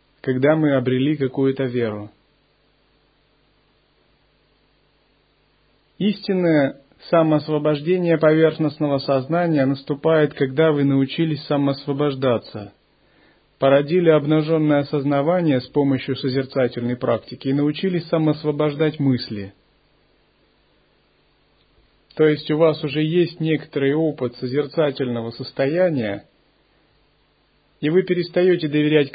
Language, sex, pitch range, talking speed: Russian, male, 135-160 Hz, 80 wpm